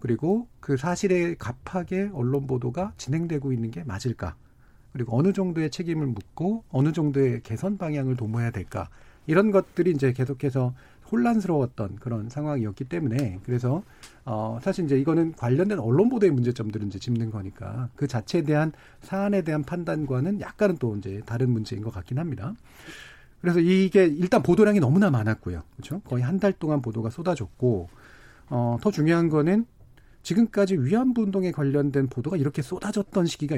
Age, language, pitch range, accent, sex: 40-59, Korean, 120-175 Hz, native, male